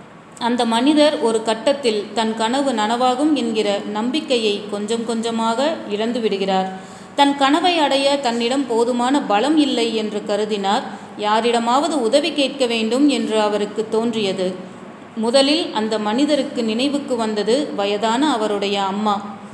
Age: 30-49